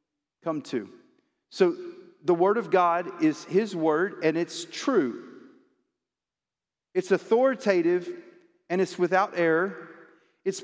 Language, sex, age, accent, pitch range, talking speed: English, male, 40-59, American, 155-225 Hz, 115 wpm